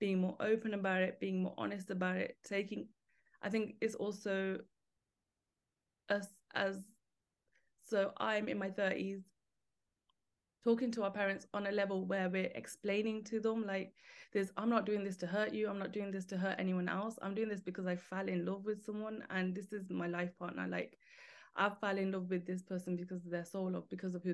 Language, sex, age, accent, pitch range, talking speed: English, female, 20-39, British, 180-200 Hz, 205 wpm